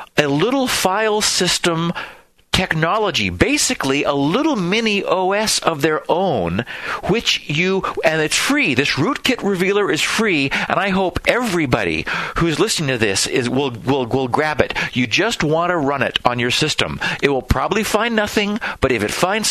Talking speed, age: 170 wpm, 50-69